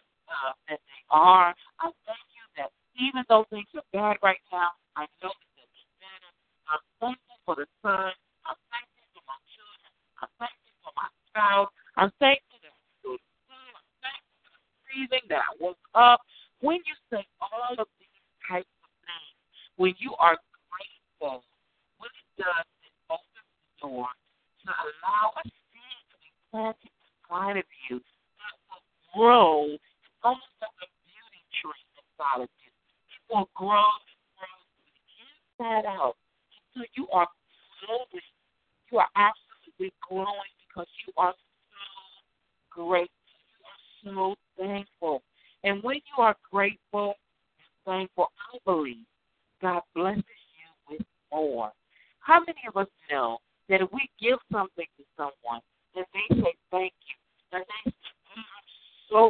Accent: American